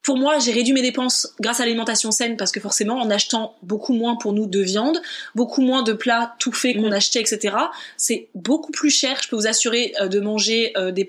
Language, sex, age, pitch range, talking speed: French, female, 20-39, 225-275 Hz, 220 wpm